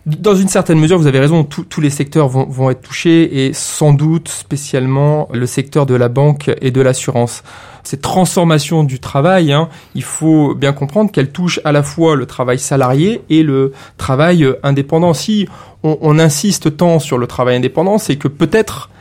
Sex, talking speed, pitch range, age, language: male, 185 wpm, 140-180 Hz, 30-49, French